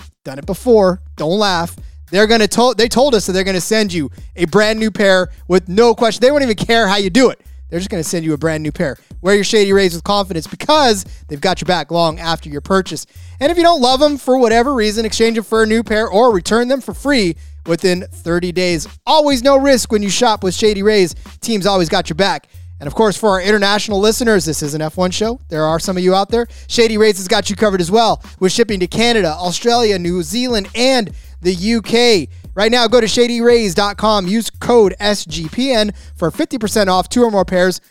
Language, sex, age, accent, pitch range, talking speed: English, male, 20-39, American, 170-225 Hz, 230 wpm